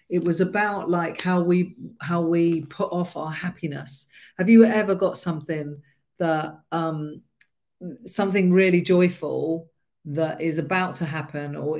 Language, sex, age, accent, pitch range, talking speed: English, female, 40-59, British, 160-210 Hz, 140 wpm